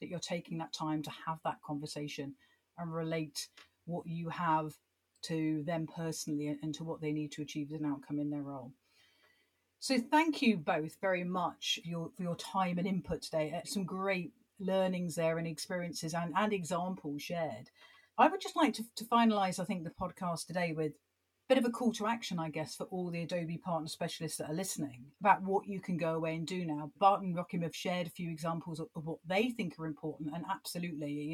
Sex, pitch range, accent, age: female, 160-200 Hz, British, 40-59